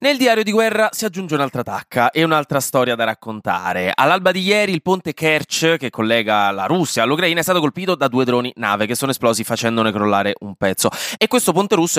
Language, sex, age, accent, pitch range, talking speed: Italian, male, 20-39, native, 115-165 Hz, 210 wpm